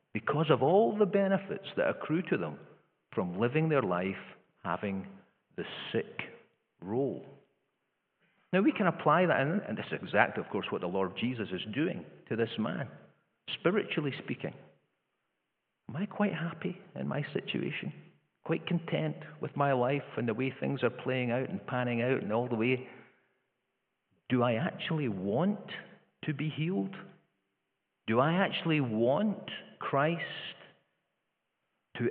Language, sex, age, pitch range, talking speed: English, male, 50-69, 115-165 Hz, 150 wpm